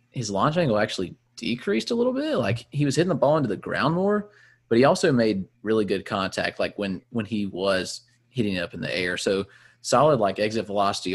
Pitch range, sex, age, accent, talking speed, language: 100-120 Hz, male, 30-49, American, 220 wpm, English